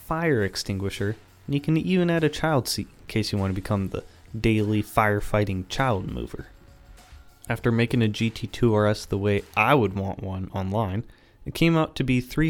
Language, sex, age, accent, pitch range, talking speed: English, male, 20-39, American, 100-120 Hz, 185 wpm